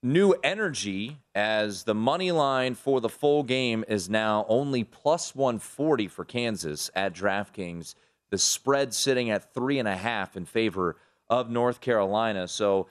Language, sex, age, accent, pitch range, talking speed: English, male, 30-49, American, 110-160 Hz, 155 wpm